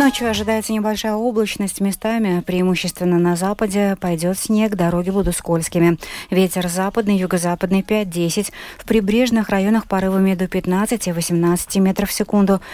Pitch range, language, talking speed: 175-215 Hz, Russian, 125 wpm